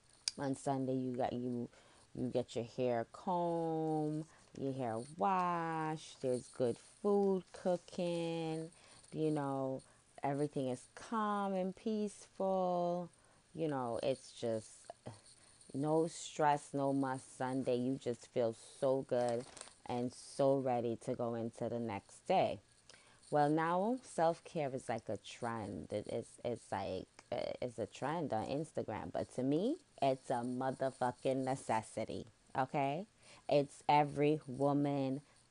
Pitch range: 120-155 Hz